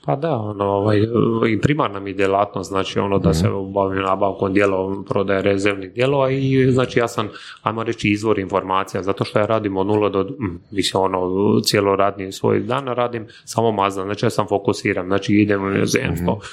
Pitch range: 100-115 Hz